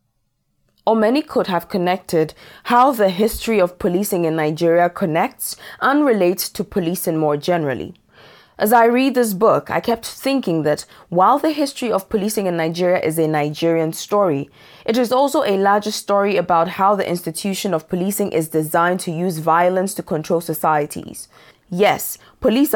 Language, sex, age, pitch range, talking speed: English, female, 20-39, 160-205 Hz, 160 wpm